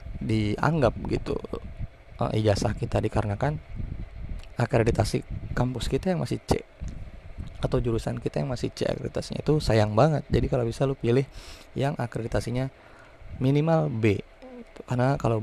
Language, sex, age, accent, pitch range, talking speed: Indonesian, male, 20-39, native, 105-125 Hz, 125 wpm